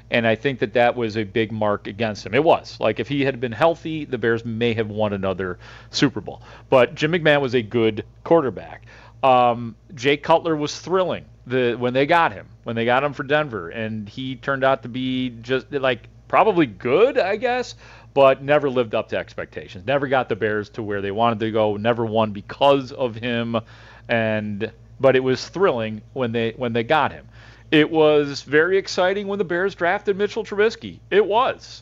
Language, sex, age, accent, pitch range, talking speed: English, male, 40-59, American, 115-145 Hz, 200 wpm